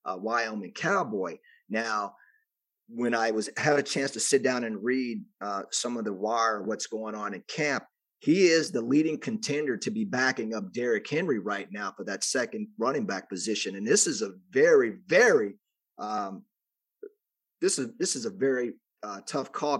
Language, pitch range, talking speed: English, 135-225 Hz, 185 wpm